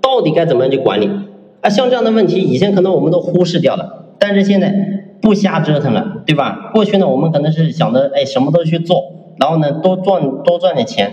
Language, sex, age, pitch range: Chinese, male, 30-49, 155-200 Hz